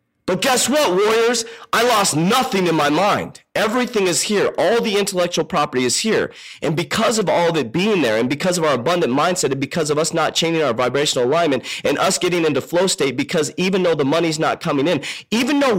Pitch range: 145-205 Hz